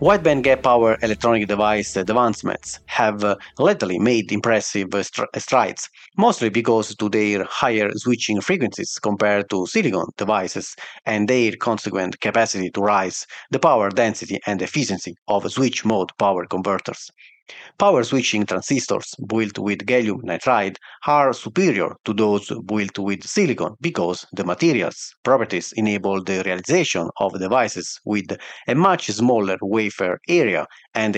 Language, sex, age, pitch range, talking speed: English, male, 40-59, 100-120 Hz, 135 wpm